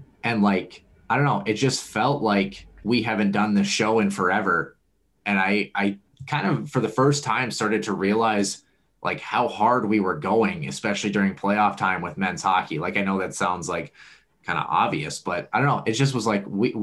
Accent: American